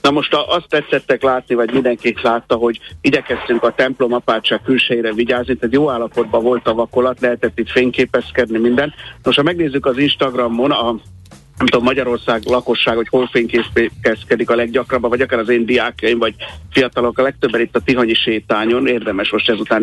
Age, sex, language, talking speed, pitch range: 60-79, male, Hungarian, 170 wpm, 115-130 Hz